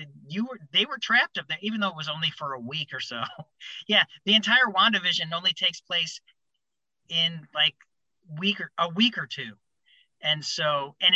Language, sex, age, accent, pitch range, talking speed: English, male, 40-59, American, 155-205 Hz, 175 wpm